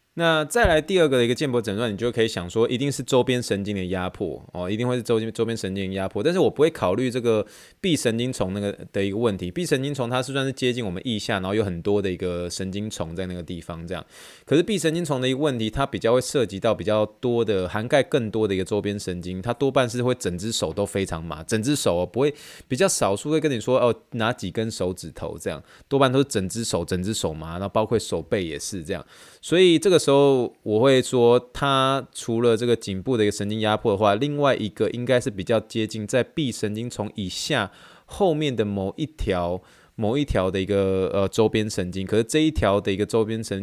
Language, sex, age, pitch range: Chinese, male, 20-39, 95-130 Hz